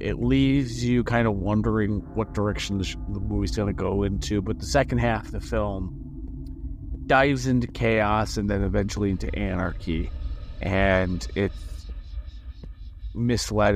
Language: English